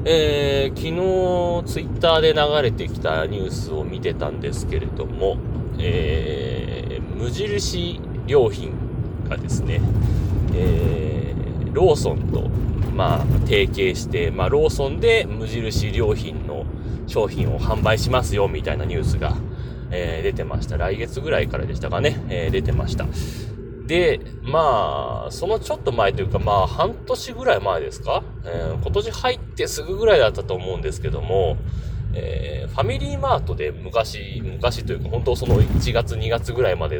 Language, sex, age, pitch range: Japanese, male, 30-49, 105-135 Hz